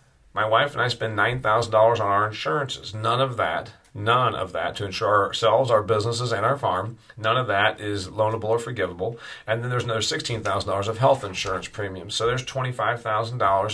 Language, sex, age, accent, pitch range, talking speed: English, male, 40-59, American, 110-135 Hz, 180 wpm